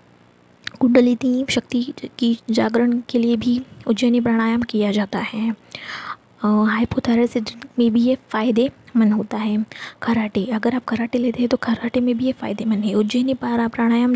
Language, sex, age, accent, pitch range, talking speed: Hindi, female, 20-39, native, 220-250 Hz, 145 wpm